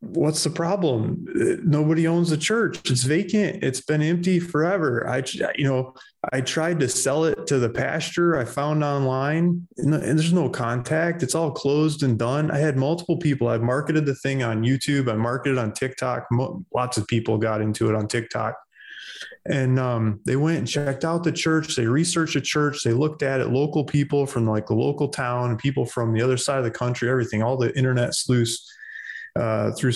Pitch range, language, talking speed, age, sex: 120-155 Hz, English, 195 wpm, 20-39, male